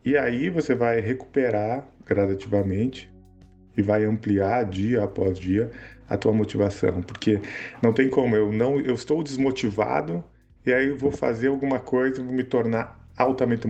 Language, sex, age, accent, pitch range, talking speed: Portuguese, male, 50-69, Brazilian, 100-130 Hz, 160 wpm